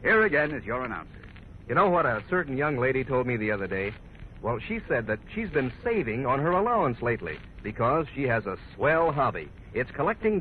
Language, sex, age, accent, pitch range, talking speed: English, male, 60-79, American, 120-195 Hz, 210 wpm